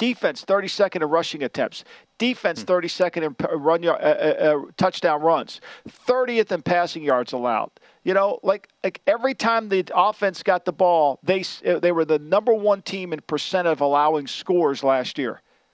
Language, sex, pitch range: English, male, 170-235 Hz